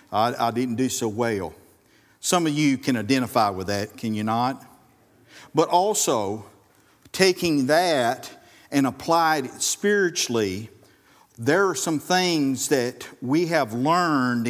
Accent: American